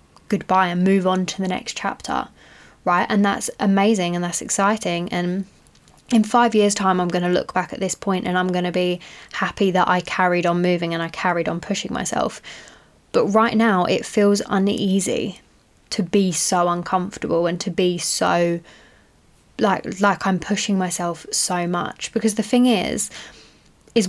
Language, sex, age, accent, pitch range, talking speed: English, female, 10-29, British, 180-225 Hz, 175 wpm